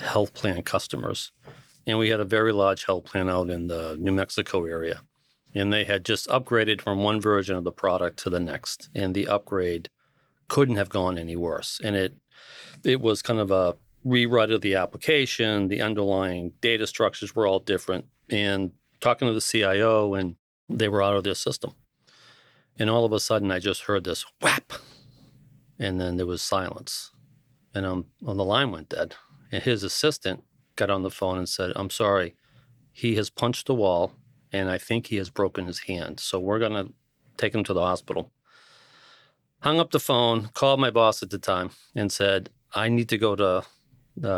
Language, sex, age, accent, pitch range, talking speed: English, male, 40-59, American, 95-115 Hz, 190 wpm